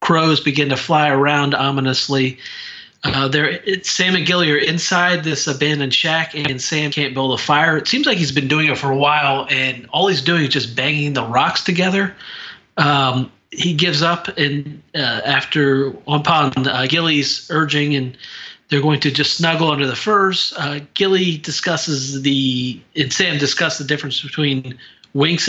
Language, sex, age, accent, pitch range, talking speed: English, male, 40-59, American, 135-160 Hz, 170 wpm